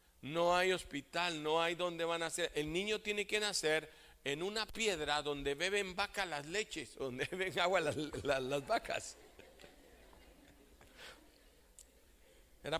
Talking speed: 140 wpm